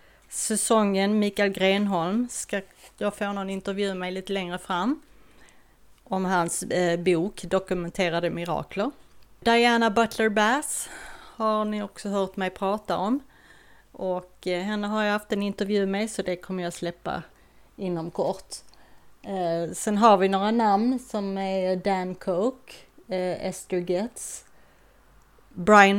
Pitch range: 185-230 Hz